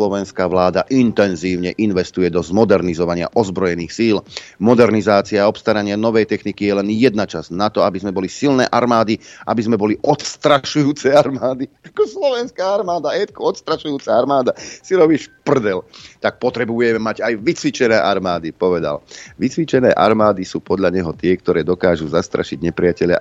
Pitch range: 90-110 Hz